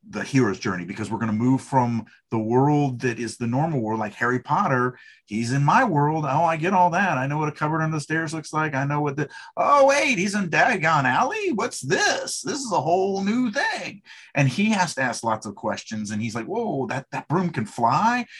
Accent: American